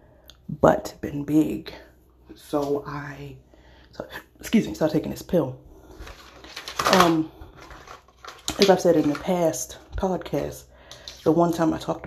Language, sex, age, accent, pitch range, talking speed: English, female, 30-49, American, 145-215 Hz, 125 wpm